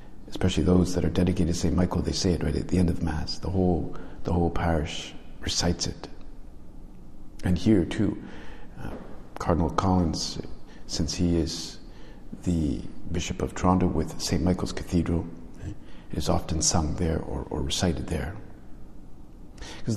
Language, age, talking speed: English, 50-69, 150 wpm